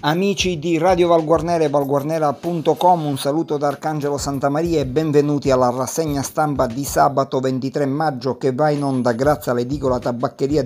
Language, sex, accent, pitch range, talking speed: Italian, male, native, 135-160 Hz, 150 wpm